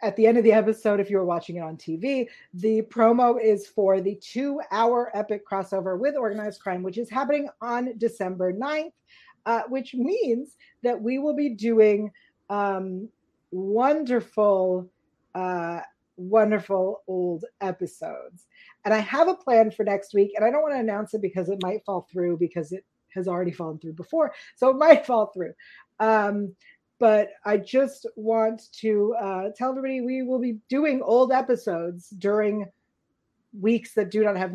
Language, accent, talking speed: English, American, 170 wpm